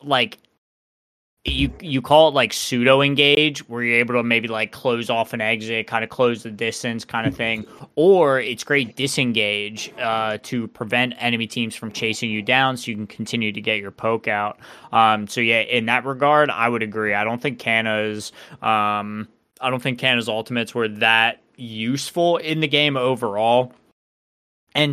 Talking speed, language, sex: 180 wpm, English, male